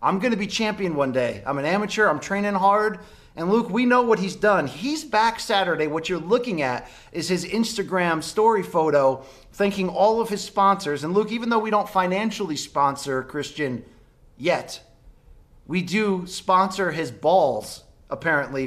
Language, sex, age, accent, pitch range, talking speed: English, male, 30-49, American, 150-205 Hz, 165 wpm